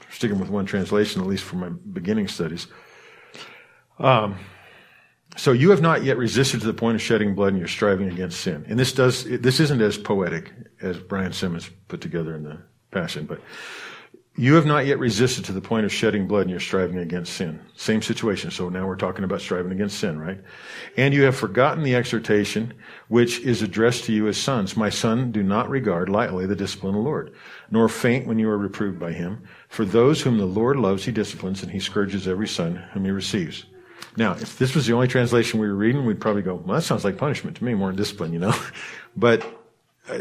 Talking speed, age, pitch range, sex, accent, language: 215 wpm, 50-69, 100-130 Hz, male, American, English